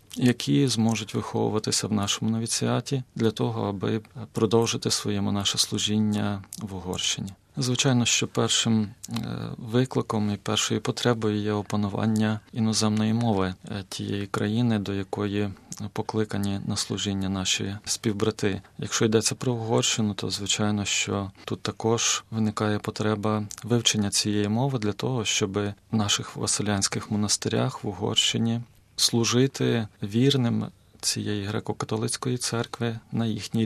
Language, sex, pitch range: Ukrainian, male, 105-115 Hz